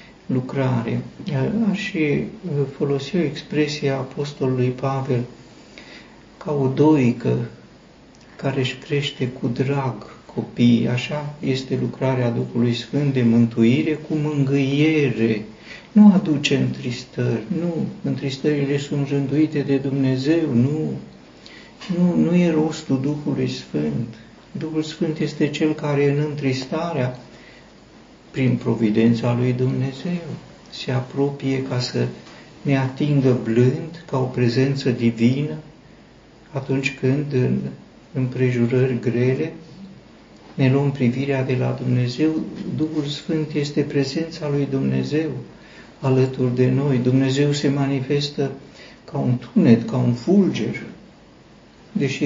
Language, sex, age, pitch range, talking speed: Romanian, male, 60-79, 125-150 Hz, 110 wpm